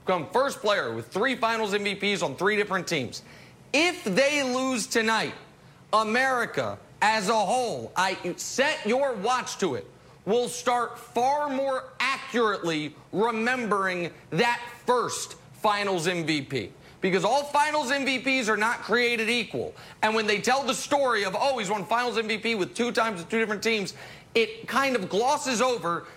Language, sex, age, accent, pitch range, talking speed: English, male, 30-49, American, 185-250 Hz, 150 wpm